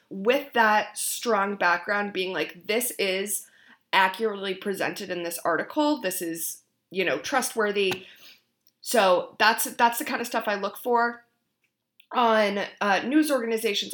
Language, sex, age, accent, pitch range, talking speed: English, female, 20-39, American, 180-225 Hz, 140 wpm